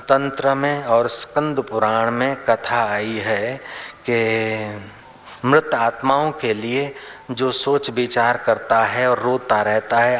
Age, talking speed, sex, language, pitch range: 40-59, 135 wpm, male, Hindi, 110-125 Hz